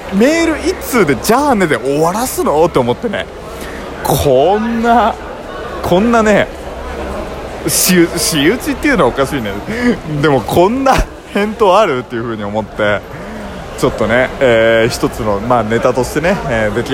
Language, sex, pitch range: Japanese, male, 120-185 Hz